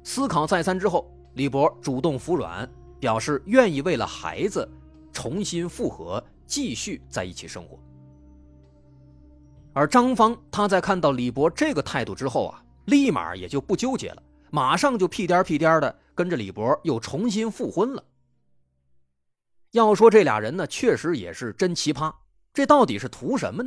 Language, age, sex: Chinese, 30-49, male